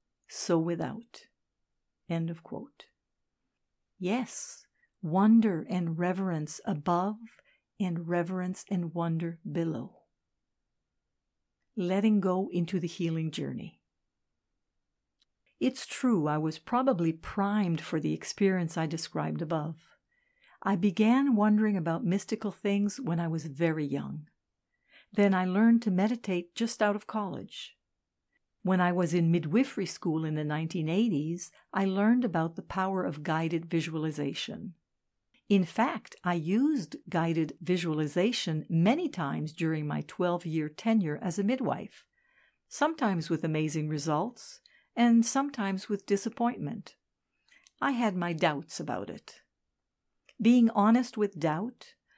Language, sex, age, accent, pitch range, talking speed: English, female, 60-79, American, 165-220 Hz, 120 wpm